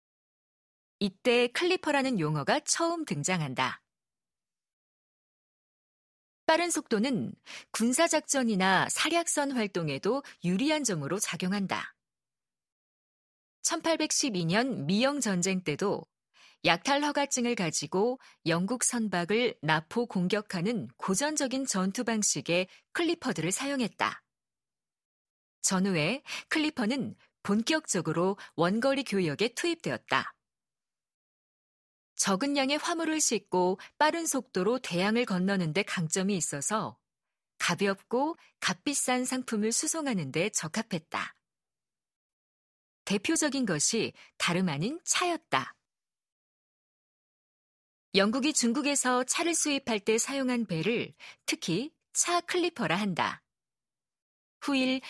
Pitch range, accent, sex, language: 185-280 Hz, native, female, Korean